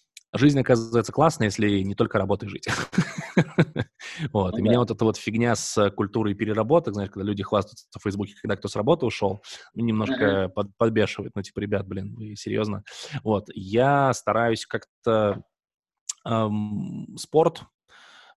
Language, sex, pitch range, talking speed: Russian, male, 105-125 Hz, 135 wpm